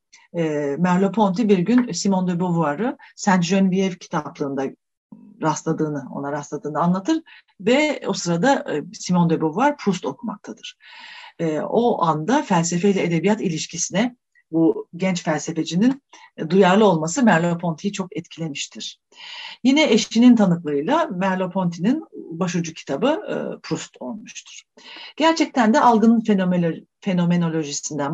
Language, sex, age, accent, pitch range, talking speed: Turkish, female, 40-59, native, 165-230 Hz, 100 wpm